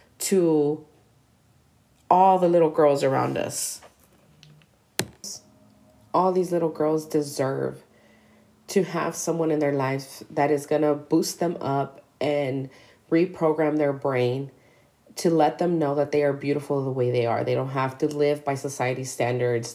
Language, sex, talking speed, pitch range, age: English, female, 145 wpm, 135-160 Hz, 30-49